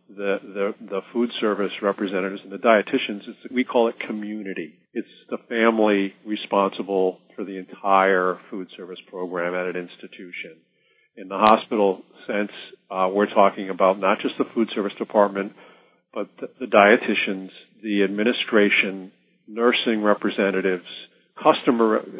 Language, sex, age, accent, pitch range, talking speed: English, male, 40-59, American, 100-125 Hz, 135 wpm